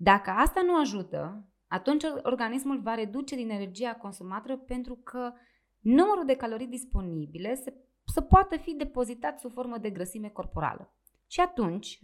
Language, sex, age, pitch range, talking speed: Romanian, female, 20-39, 180-265 Hz, 140 wpm